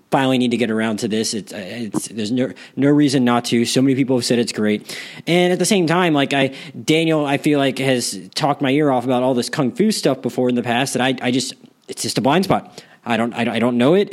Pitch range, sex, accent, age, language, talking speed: 120-140 Hz, male, American, 20-39, English, 270 wpm